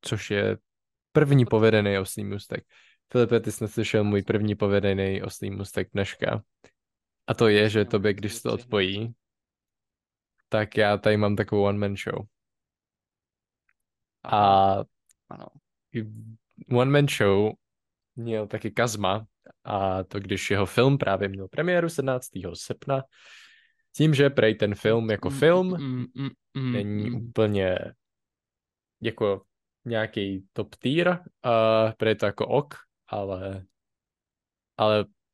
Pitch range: 100-120 Hz